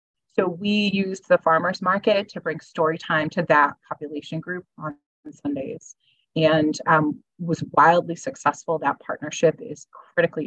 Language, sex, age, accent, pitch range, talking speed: English, female, 30-49, American, 155-180 Hz, 145 wpm